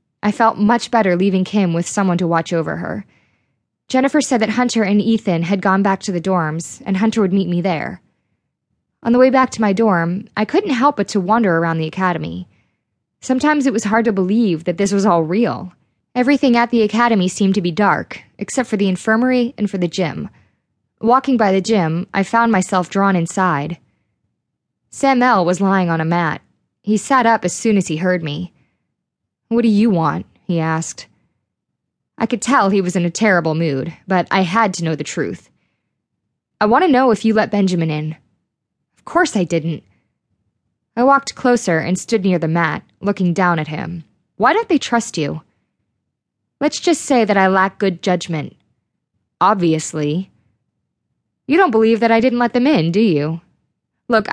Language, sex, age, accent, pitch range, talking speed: English, female, 20-39, American, 175-230 Hz, 190 wpm